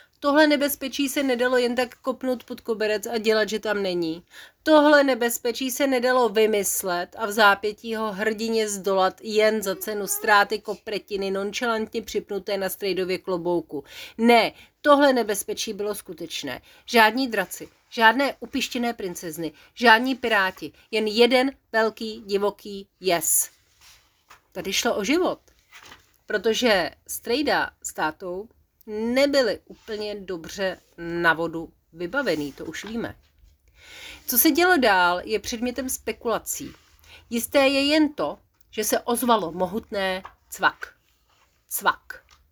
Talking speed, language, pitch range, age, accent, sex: 120 wpm, Czech, 190-250 Hz, 40-59, native, female